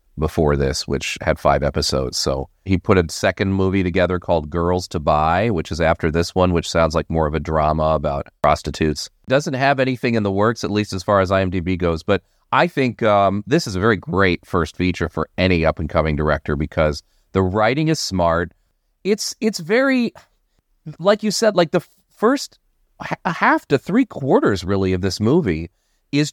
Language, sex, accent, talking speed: English, male, American, 185 wpm